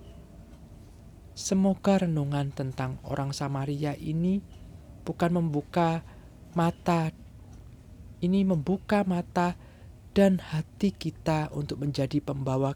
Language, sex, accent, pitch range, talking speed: Indonesian, male, native, 105-155 Hz, 85 wpm